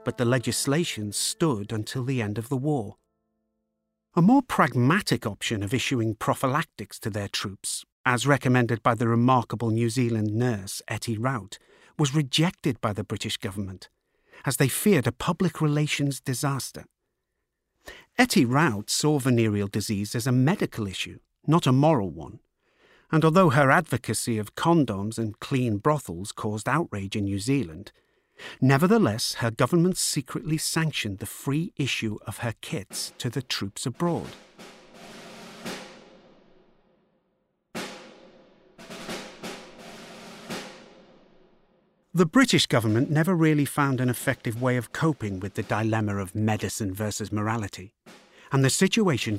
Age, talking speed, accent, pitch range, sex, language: 50-69, 130 wpm, British, 110-150 Hz, male, English